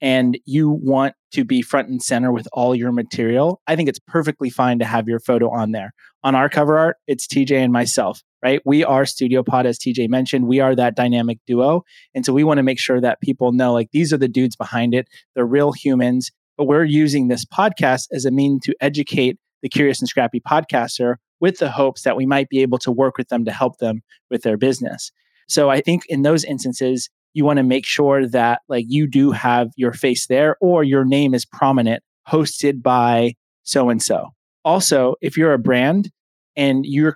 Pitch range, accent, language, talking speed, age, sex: 125-145 Hz, American, English, 210 wpm, 30-49, male